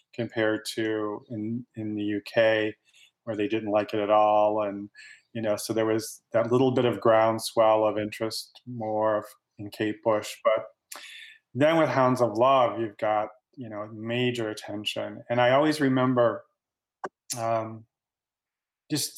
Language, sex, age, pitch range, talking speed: English, male, 30-49, 105-125 Hz, 150 wpm